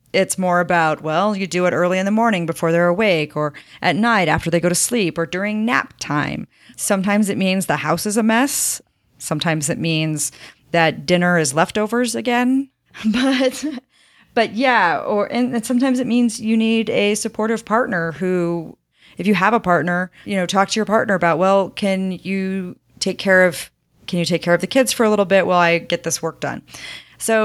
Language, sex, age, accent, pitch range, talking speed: English, female, 30-49, American, 170-215 Hz, 200 wpm